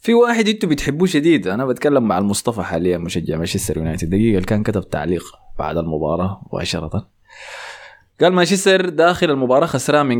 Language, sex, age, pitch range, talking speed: Arabic, male, 20-39, 95-140 Hz, 155 wpm